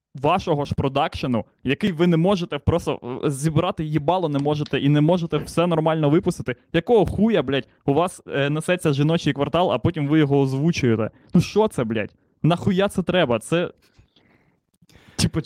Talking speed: 160 wpm